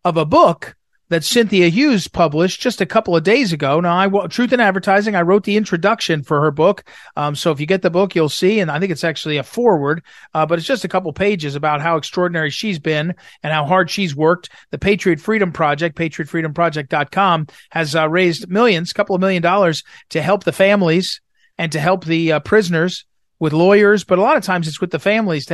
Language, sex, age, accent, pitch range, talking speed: English, male, 40-59, American, 165-205 Hz, 220 wpm